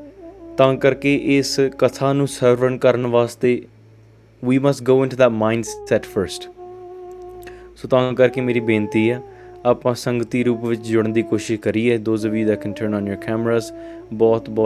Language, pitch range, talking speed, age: English, 115-140 Hz, 85 wpm, 20-39